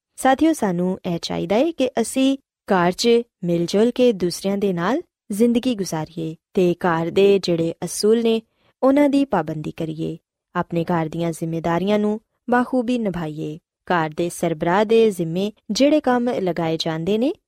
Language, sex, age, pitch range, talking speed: Punjabi, female, 20-39, 175-250 Hz, 120 wpm